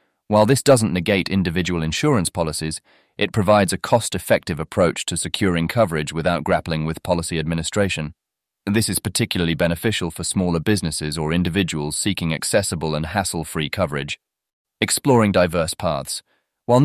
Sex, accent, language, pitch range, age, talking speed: male, British, English, 80-100 Hz, 30-49, 135 wpm